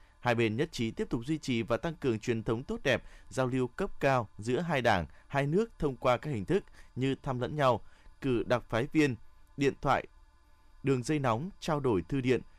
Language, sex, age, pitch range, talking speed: Vietnamese, male, 20-39, 105-140 Hz, 220 wpm